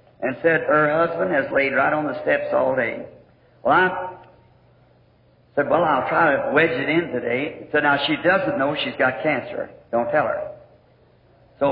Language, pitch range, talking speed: English, 125-170 Hz, 180 wpm